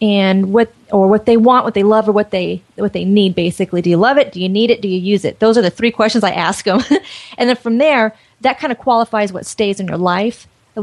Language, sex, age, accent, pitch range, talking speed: English, female, 30-49, American, 210-265 Hz, 275 wpm